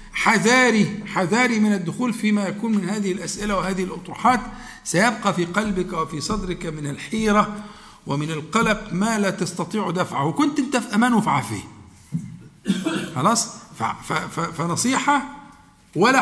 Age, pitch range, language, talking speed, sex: 50-69, 175-245 Hz, Arabic, 120 wpm, male